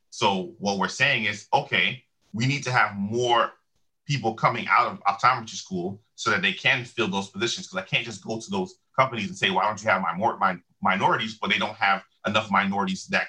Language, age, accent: English, 30-49, American